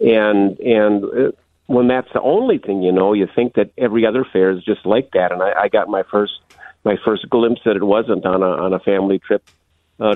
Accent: American